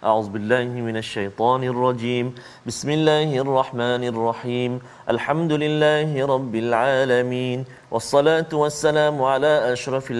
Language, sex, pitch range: Malayalam, male, 125-155 Hz